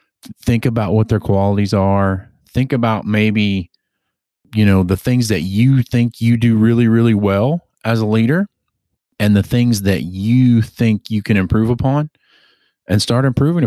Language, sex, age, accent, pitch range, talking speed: English, male, 30-49, American, 95-115 Hz, 165 wpm